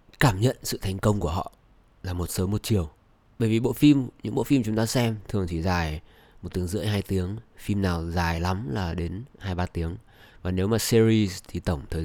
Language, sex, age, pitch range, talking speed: Vietnamese, male, 20-39, 95-115 Hz, 230 wpm